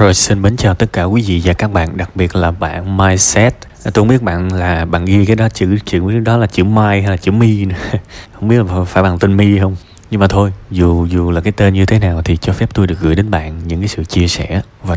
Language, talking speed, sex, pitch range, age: Vietnamese, 275 wpm, male, 90-115 Hz, 20-39